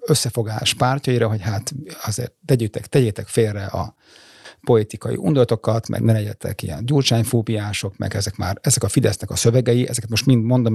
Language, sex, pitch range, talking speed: Hungarian, male, 110-135 Hz, 150 wpm